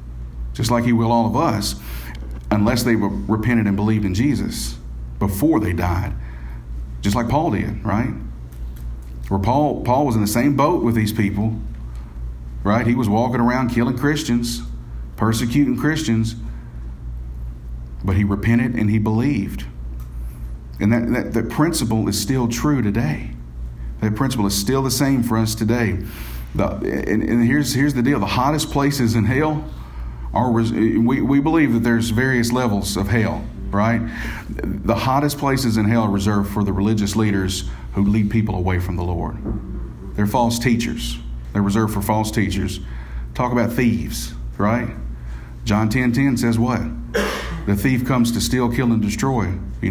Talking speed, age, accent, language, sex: 155 wpm, 40-59, American, English, male